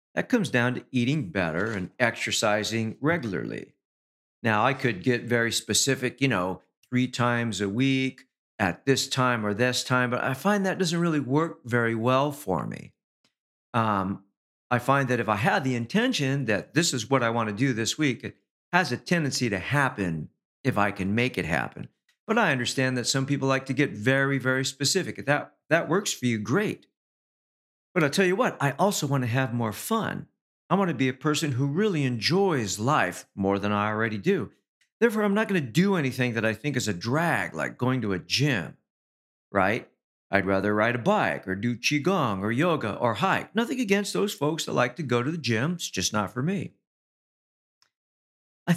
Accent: American